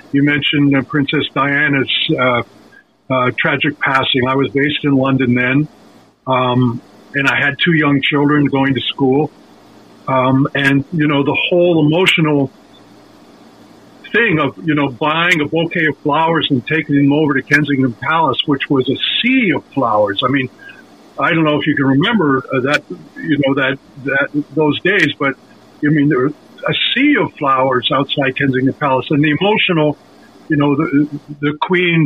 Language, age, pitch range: English, 50-69, 135-155 Hz